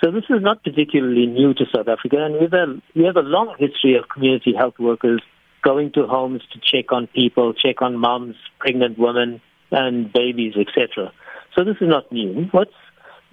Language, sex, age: English, male, 60-79